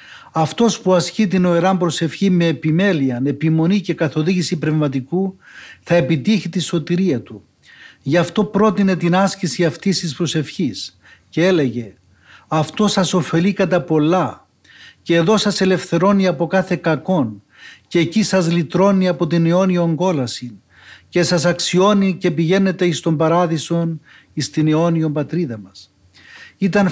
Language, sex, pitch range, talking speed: Greek, male, 160-190 Hz, 135 wpm